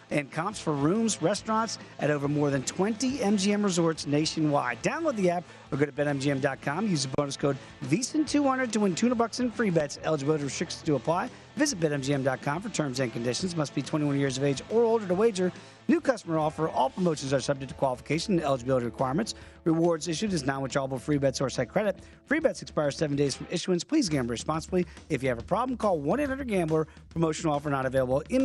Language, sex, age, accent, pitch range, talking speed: English, male, 40-59, American, 145-205 Hz, 210 wpm